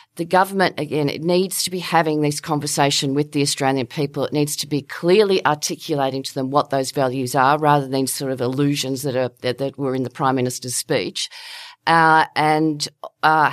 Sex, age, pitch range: female, 40-59, 135-160 Hz